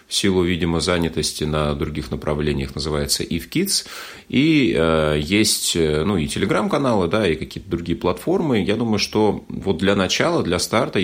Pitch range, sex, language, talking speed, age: 75-100 Hz, male, Russian, 160 wpm, 30-49